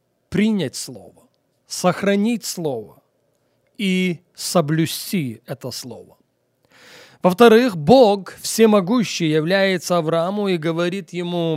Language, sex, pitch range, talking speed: Russian, male, 155-200 Hz, 85 wpm